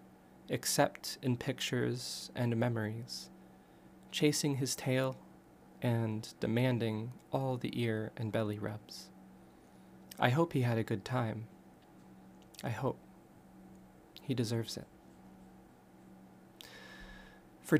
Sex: male